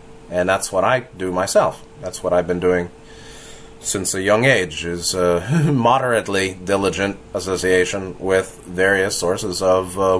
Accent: American